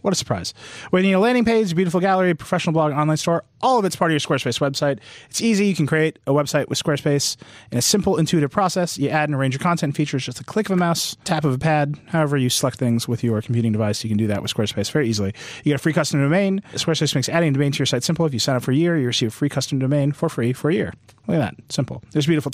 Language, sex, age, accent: English, male, 30-49, American